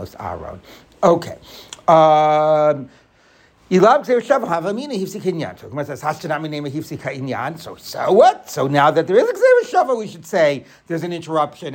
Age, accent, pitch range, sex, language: 60-79, American, 145-190 Hz, male, English